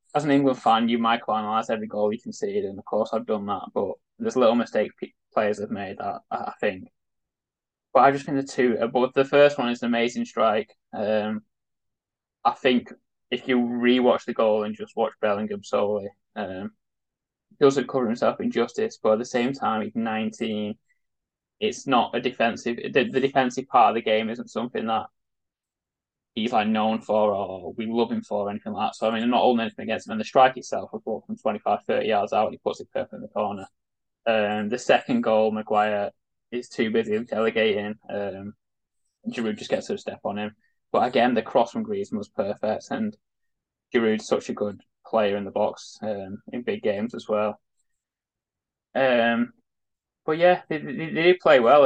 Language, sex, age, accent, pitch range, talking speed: English, male, 10-29, British, 110-140 Hz, 200 wpm